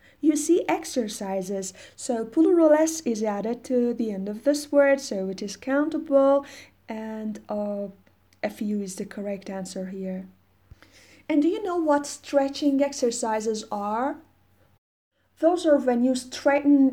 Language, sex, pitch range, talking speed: Persian, female, 200-275 Hz, 140 wpm